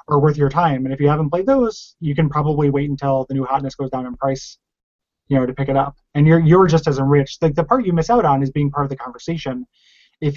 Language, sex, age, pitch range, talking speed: English, male, 20-39, 135-170 Hz, 280 wpm